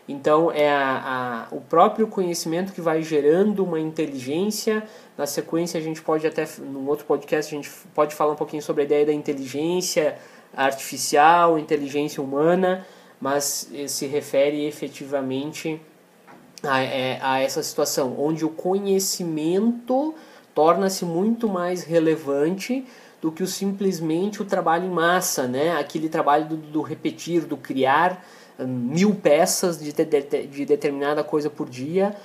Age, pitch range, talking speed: 20-39, 145-170 Hz, 135 wpm